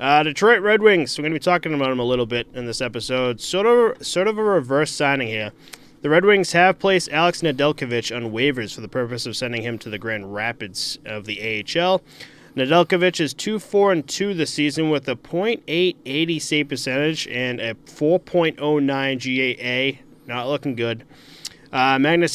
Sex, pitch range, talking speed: male, 125-160 Hz, 185 wpm